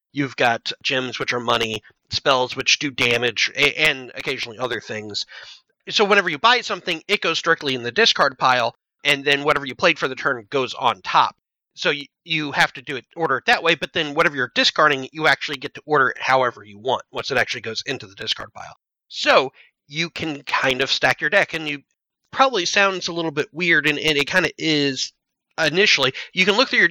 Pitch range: 135-180 Hz